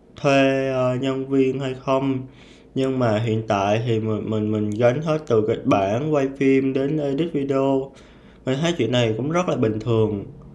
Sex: male